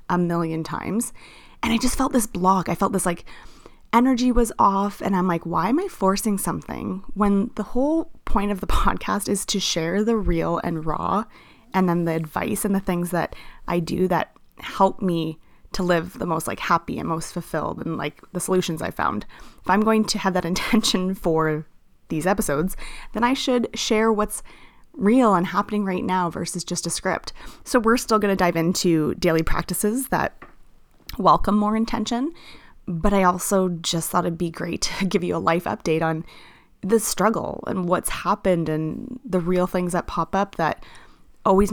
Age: 30-49